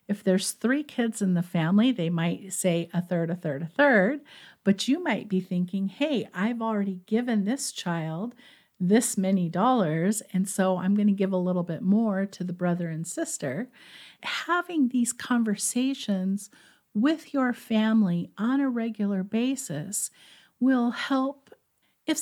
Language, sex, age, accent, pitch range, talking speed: English, female, 50-69, American, 185-230 Hz, 155 wpm